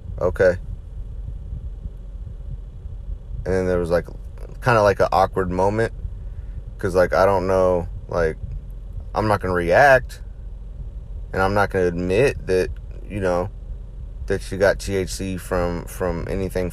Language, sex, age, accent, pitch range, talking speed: English, male, 30-49, American, 90-100 Hz, 130 wpm